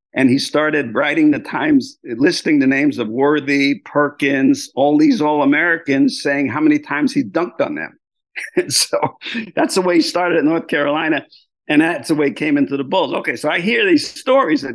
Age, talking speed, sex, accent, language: 50-69, 195 wpm, male, American, English